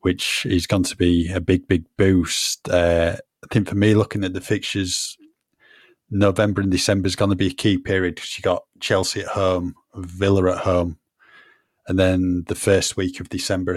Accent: British